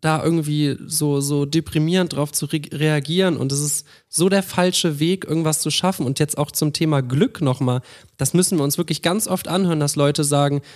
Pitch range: 145-170 Hz